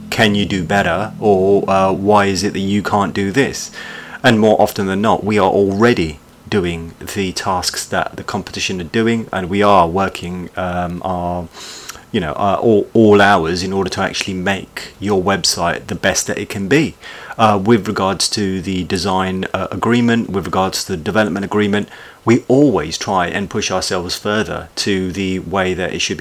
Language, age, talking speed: English, 30-49, 190 wpm